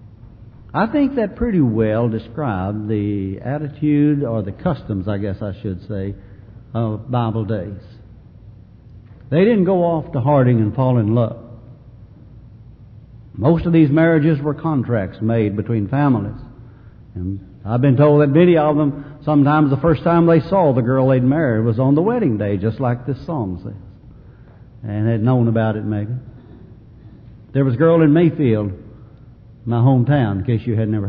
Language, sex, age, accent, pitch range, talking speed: English, male, 60-79, American, 110-135 Hz, 165 wpm